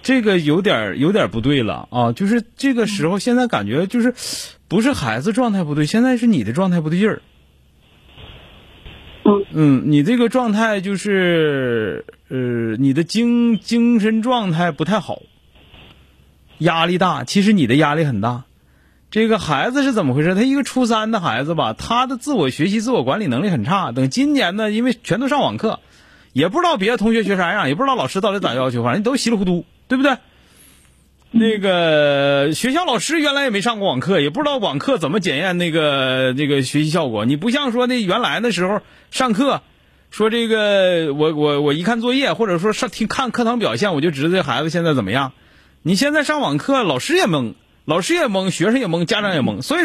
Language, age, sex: Chinese, 30-49, male